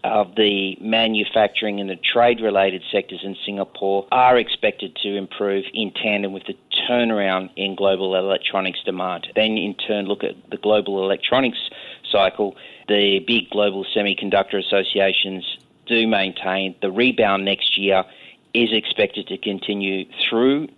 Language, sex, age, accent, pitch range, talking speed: English, male, 30-49, Australian, 95-110 Hz, 140 wpm